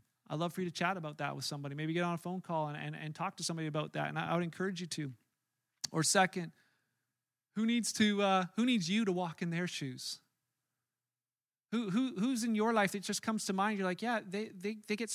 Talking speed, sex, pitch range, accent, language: 255 wpm, male, 150-180 Hz, American, English